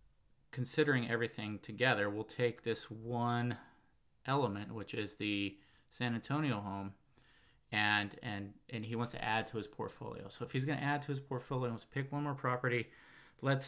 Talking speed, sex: 170 wpm, male